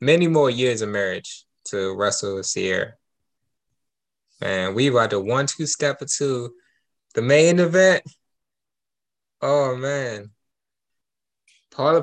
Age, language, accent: 20-39, English, American